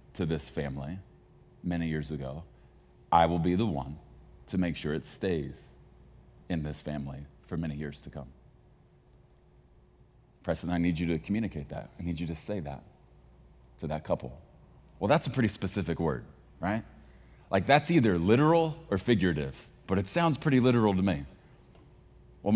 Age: 30-49